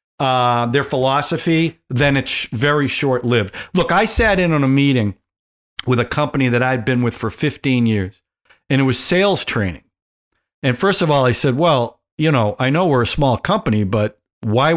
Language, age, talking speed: English, 50-69, 195 wpm